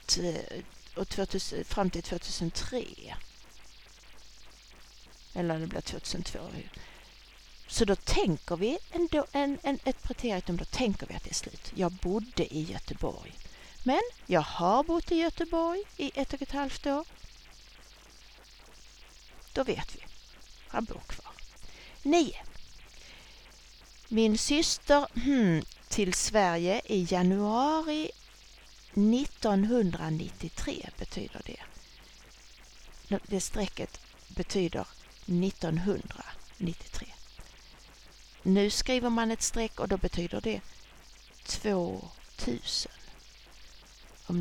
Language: English